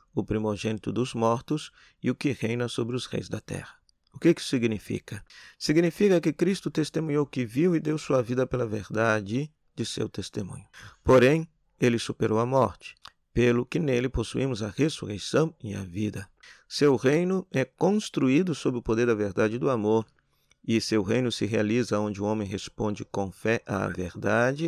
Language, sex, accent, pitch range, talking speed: Portuguese, male, Brazilian, 100-130 Hz, 175 wpm